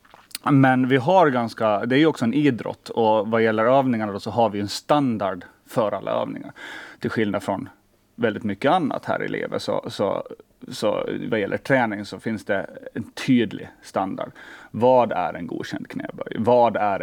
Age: 30-49